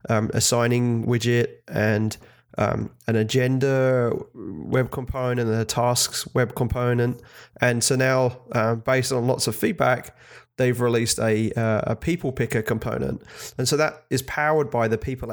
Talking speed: 155 wpm